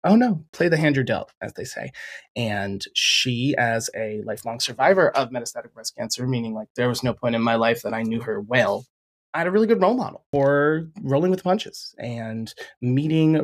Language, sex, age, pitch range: English, male, 30-49, 130-165 Hz